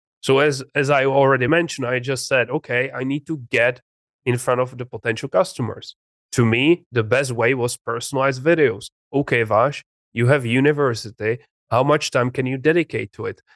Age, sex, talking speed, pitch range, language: 30-49, male, 180 wpm, 120-145 Hz, English